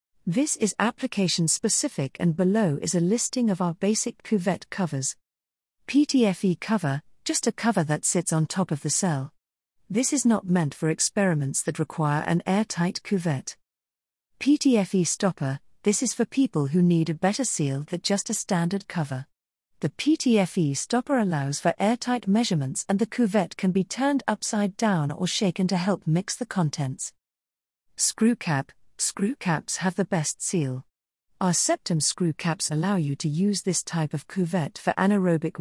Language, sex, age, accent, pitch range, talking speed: English, female, 40-59, British, 150-210 Hz, 160 wpm